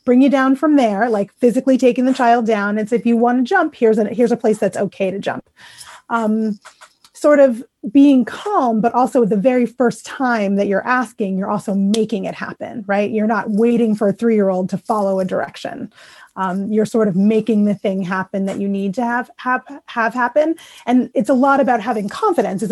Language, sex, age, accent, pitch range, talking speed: English, female, 30-49, American, 210-250 Hz, 205 wpm